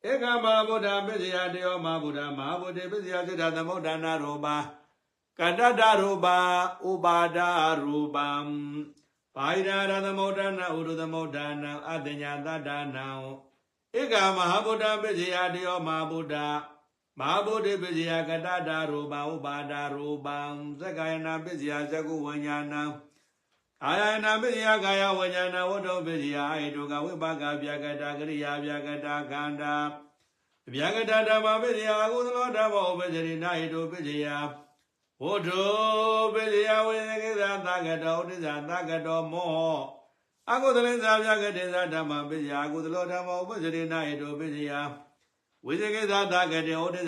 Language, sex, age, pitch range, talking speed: English, male, 60-79, 150-190 Hz, 55 wpm